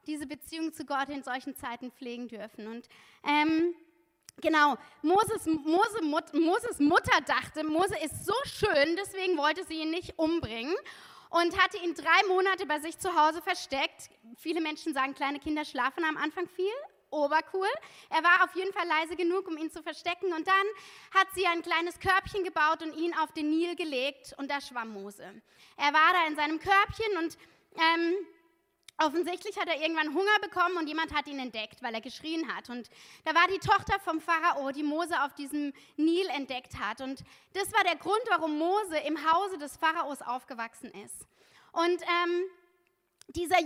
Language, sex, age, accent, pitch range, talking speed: German, female, 20-39, German, 290-360 Hz, 180 wpm